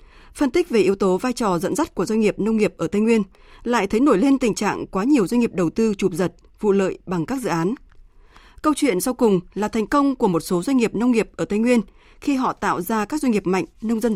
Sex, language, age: female, Vietnamese, 20-39